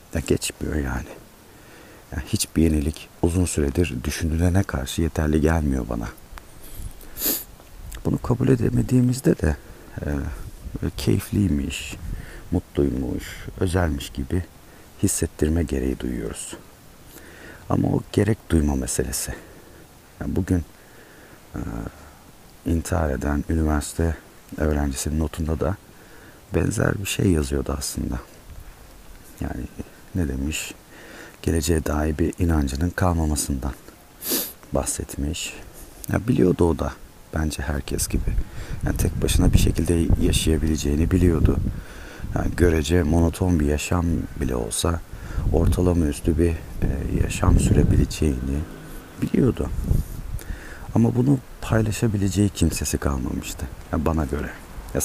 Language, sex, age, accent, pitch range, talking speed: Turkish, male, 50-69, native, 75-90 Hz, 95 wpm